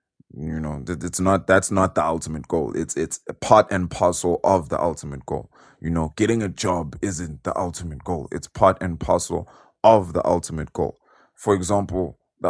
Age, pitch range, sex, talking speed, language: 20-39, 85-105 Hz, male, 185 wpm, English